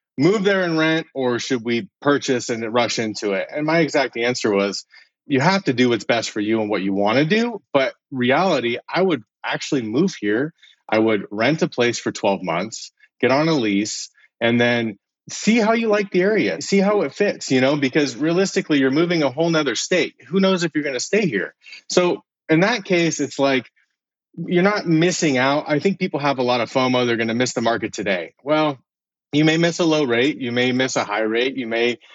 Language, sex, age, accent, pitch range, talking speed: English, male, 30-49, American, 120-170 Hz, 225 wpm